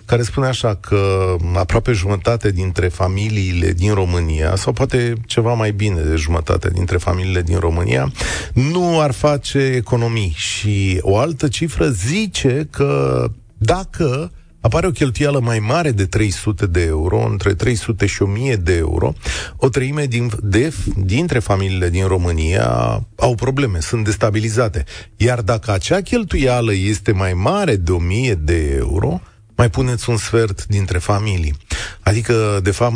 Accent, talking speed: native, 140 wpm